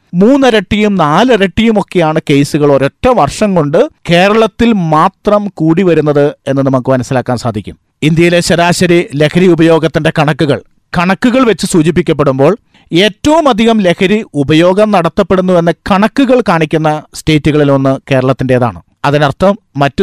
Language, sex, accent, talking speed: Malayalam, male, native, 105 wpm